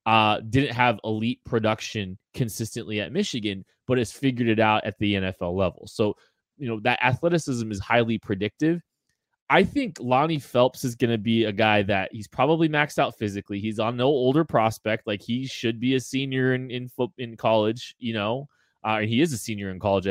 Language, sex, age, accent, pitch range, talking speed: English, male, 20-39, American, 105-125 Hz, 195 wpm